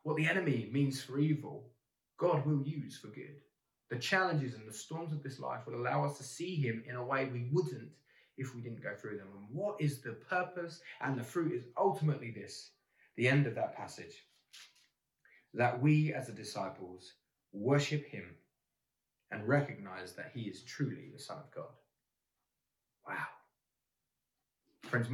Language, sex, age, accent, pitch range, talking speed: English, male, 20-39, British, 120-150 Hz, 170 wpm